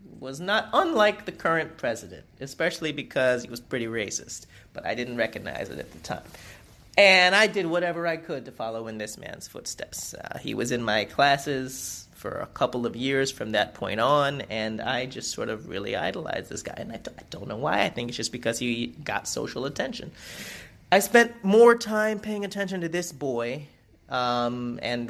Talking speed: 195 wpm